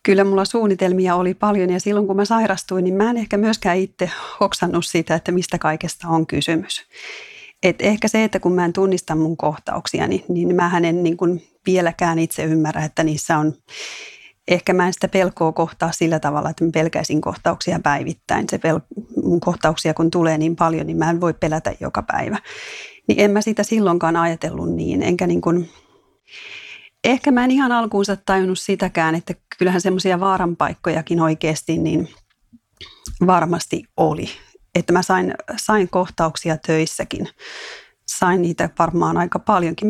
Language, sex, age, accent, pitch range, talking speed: Finnish, female, 30-49, native, 165-195 Hz, 160 wpm